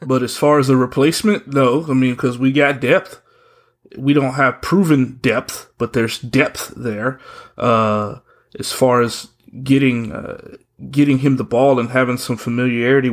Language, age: English, 30-49